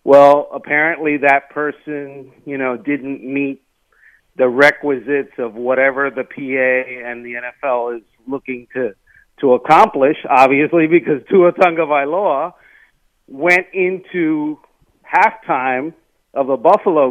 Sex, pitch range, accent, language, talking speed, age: male, 140-185 Hz, American, English, 110 wpm, 50-69